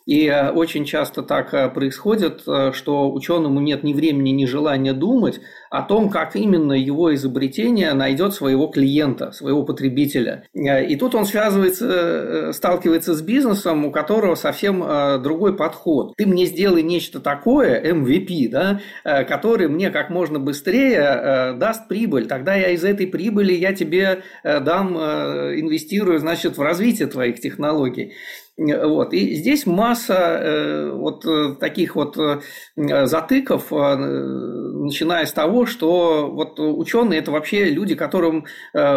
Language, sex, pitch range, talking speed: Russian, male, 140-190 Hz, 125 wpm